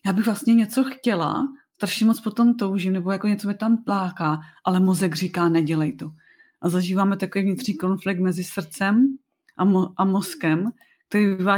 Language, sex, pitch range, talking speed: Czech, female, 170-200 Hz, 165 wpm